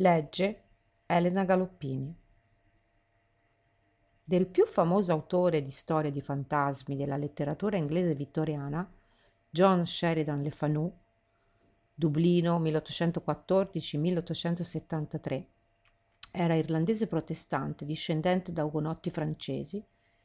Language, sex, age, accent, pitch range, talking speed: Italian, female, 50-69, native, 150-200 Hz, 85 wpm